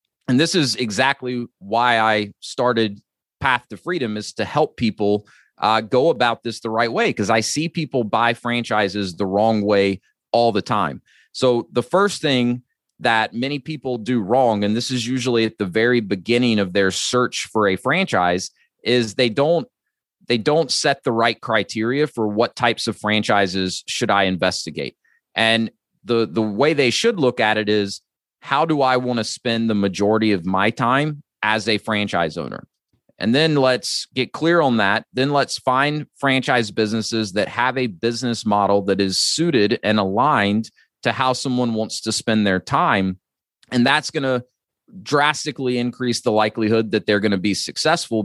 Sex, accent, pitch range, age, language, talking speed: male, American, 105-130 Hz, 30-49, English, 175 wpm